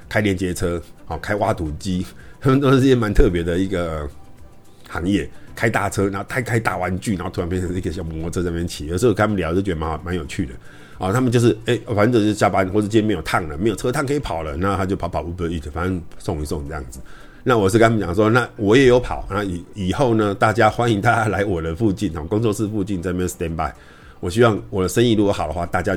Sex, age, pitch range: male, 50-69, 85-115 Hz